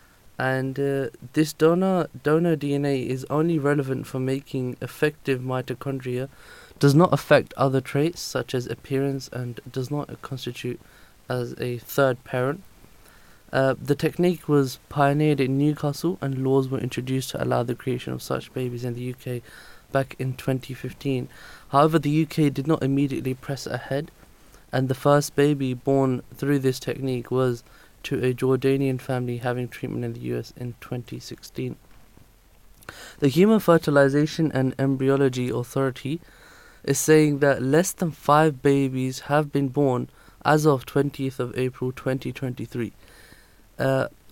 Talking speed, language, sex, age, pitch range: 140 wpm, English, male, 20-39, 125-145 Hz